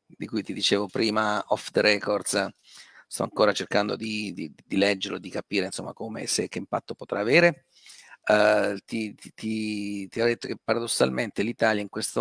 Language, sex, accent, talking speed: Italian, male, native, 175 wpm